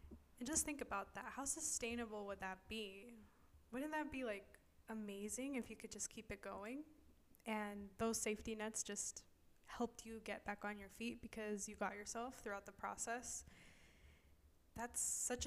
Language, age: English, 10-29